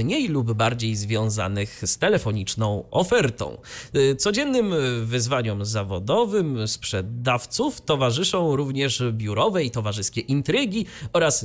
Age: 30-49